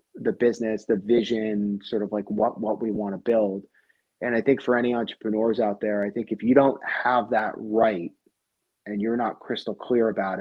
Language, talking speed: English, 200 wpm